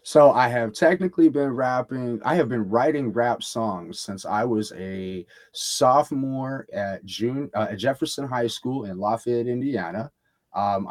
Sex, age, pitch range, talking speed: male, 30-49, 110-140 Hz, 155 wpm